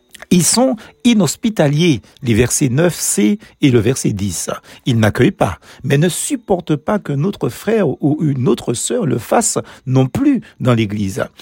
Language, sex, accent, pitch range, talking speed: French, male, French, 120-195 Hz, 160 wpm